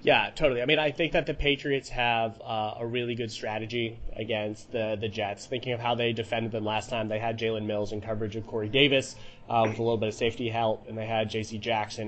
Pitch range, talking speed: 110-135 Hz, 245 wpm